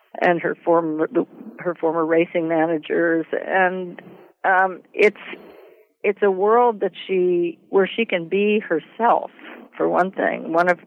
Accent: American